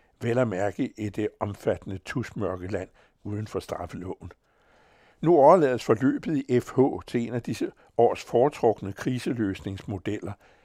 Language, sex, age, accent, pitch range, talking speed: Danish, male, 60-79, American, 105-130 Hz, 130 wpm